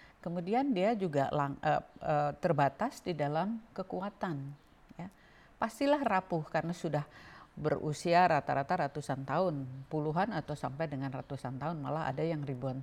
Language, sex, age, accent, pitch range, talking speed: Indonesian, female, 50-69, native, 145-195 Hz, 135 wpm